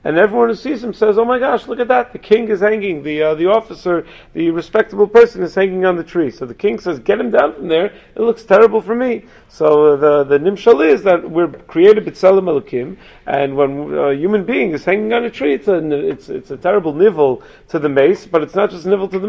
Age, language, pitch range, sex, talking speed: 40-59, English, 165-225 Hz, male, 250 wpm